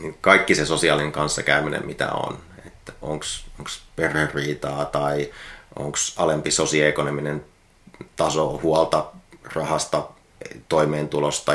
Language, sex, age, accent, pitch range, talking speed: Finnish, male, 30-49, native, 75-80 Hz, 95 wpm